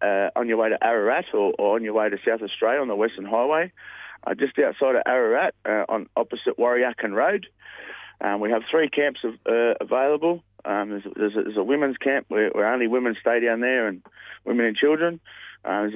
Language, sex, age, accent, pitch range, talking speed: English, male, 30-49, Australian, 105-130 Hz, 220 wpm